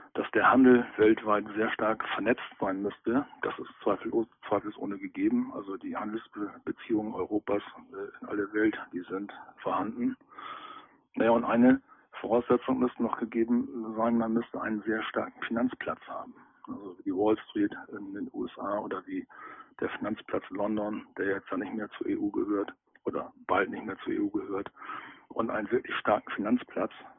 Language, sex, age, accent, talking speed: German, male, 50-69, German, 155 wpm